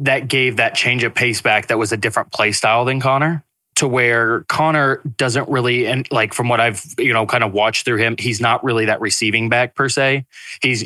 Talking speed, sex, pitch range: 225 wpm, male, 110-130 Hz